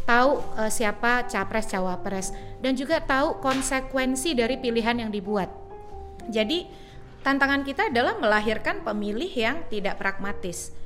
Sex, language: female, Indonesian